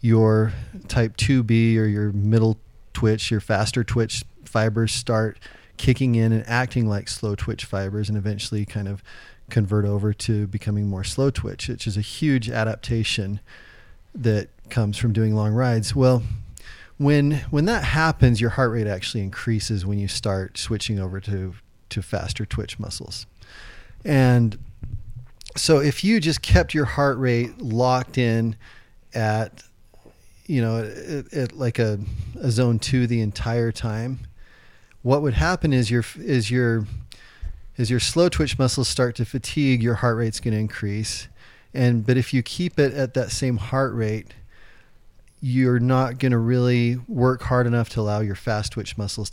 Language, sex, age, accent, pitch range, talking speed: English, male, 30-49, American, 105-125 Hz, 160 wpm